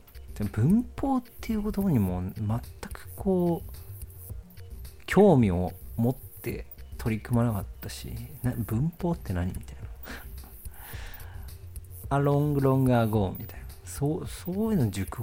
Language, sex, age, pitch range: Japanese, male, 40-59, 95-135 Hz